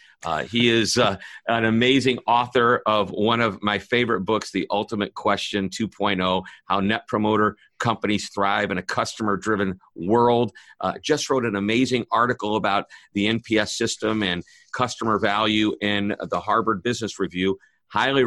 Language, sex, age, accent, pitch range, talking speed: English, male, 50-69, American, 100-125 Hz, 150 wpm